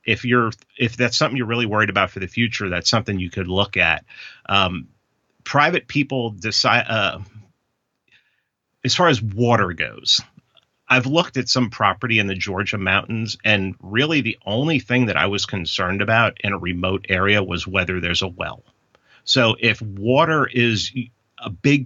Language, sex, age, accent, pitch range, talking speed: English, male, 40-59, American, 100-120 Hz, 175 wpm